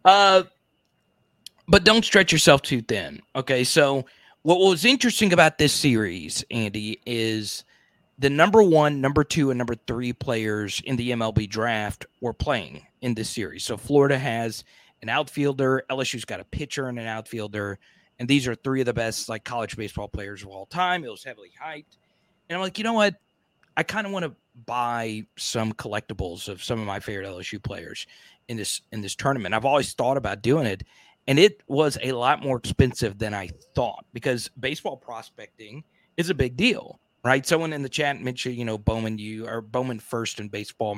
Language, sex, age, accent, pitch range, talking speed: English, male, 30-49, American, 110-140 Hz, 190 wpm